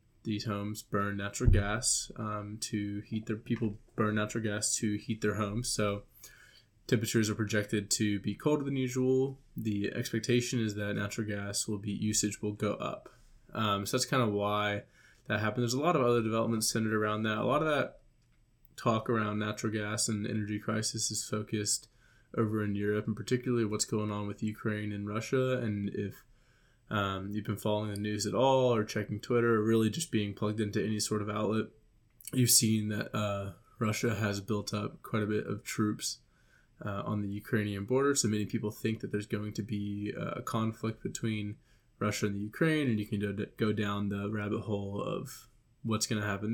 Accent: American